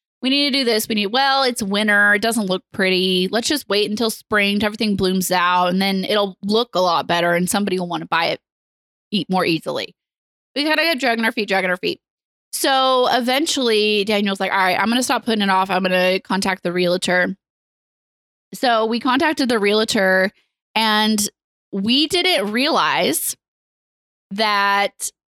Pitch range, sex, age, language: 190-250 Hz, female, 20-39, English